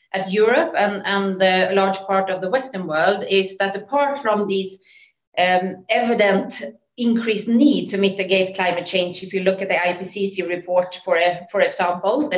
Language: English